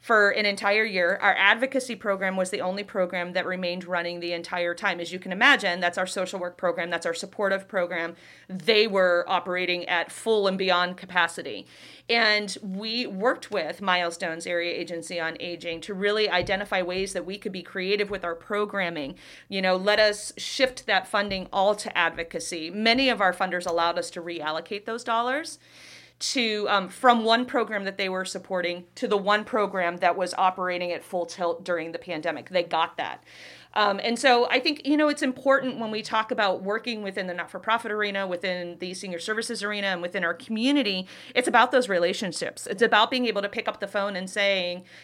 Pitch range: 180-215 Hz